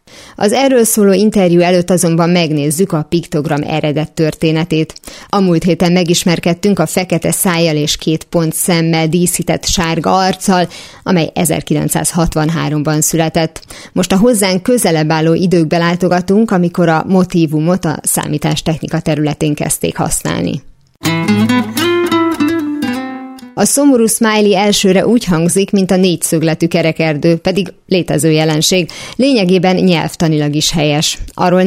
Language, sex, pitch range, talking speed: Hungarian, female, 160-190 Hz, 115 wpm